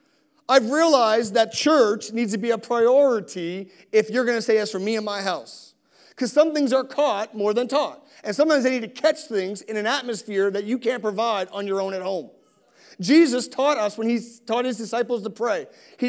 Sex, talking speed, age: male, 215 wpm, 40-59